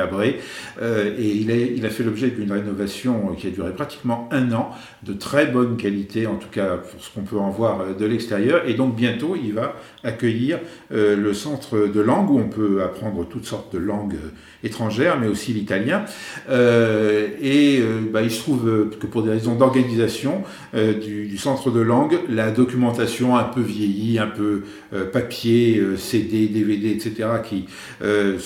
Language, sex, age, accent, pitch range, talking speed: French, male, 50-69, French, 105-120 Hz, 175 wpm